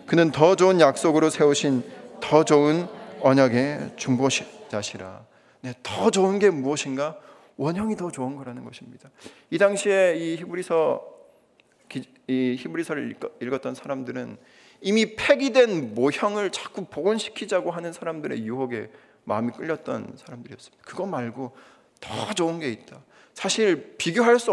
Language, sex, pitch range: Korean, male, 130-180 Hz